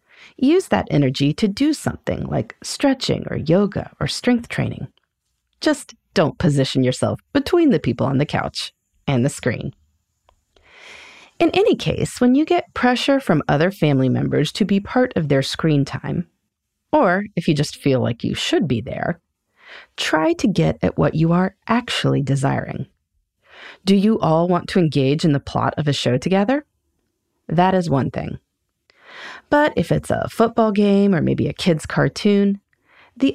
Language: English